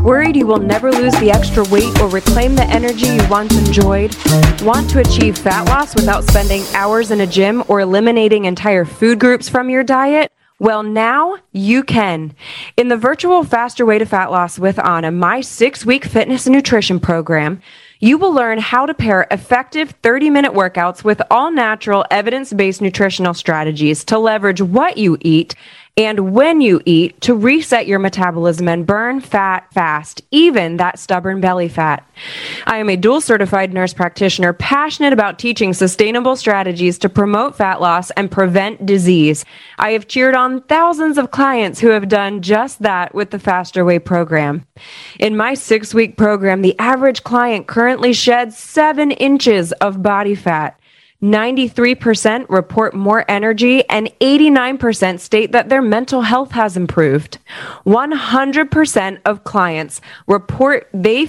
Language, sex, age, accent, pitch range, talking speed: English, female, 20-39, American, 190-245 Hz, 155 wpm